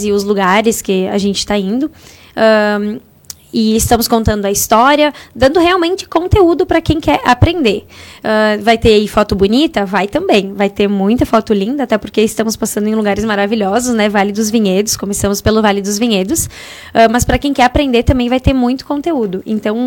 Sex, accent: female, Brazilian